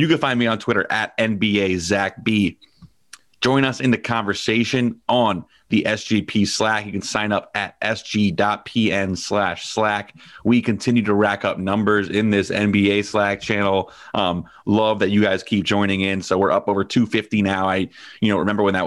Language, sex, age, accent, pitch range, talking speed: English, male, 30-49, American, 100-115 Hz, 180 wpm